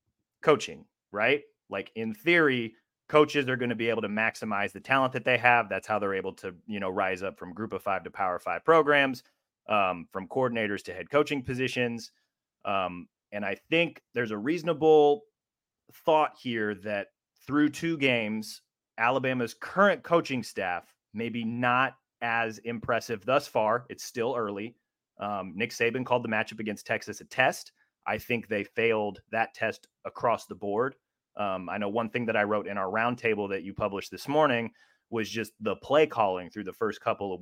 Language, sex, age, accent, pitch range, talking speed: English, male, 30-49, American, 100-130 Hz, 185 wpm